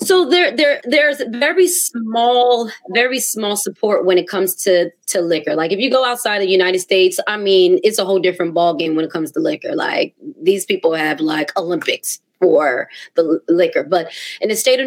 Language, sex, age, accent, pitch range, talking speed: English, female, 20-39, American, 170-210 Hz, 200 wpm